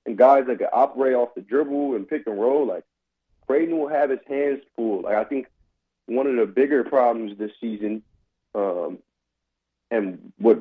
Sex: male